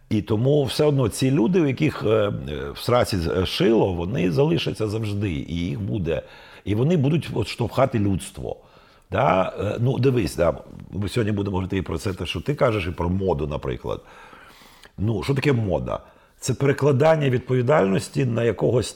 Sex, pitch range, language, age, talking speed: male, 110-165 Hz, Ukrainian, 50-69, 155 wpm